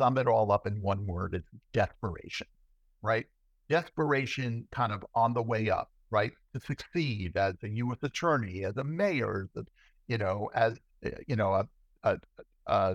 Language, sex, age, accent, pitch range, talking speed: English, male, 60-79, American, 100-140 Hz, 155 wpm